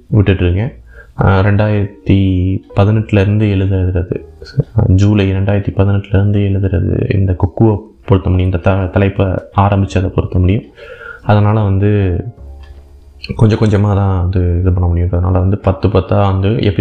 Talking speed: 105 wpm